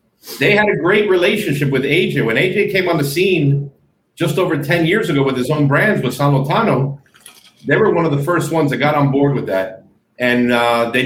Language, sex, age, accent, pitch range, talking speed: English, male, 50-69, American, 125-165 Hz, 220 wpm